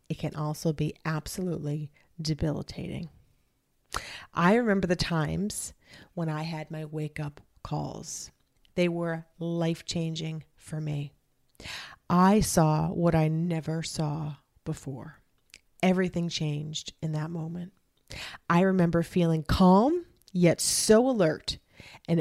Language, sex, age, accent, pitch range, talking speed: English, female, 40-59, American, 150-185 Hz, 110 wpm